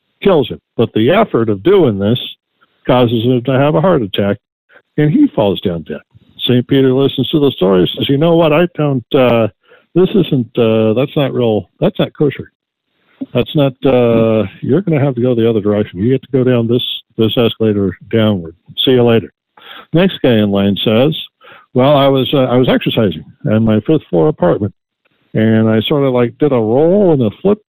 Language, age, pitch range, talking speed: English, 60-79, 115-170 Hz, 205 wpm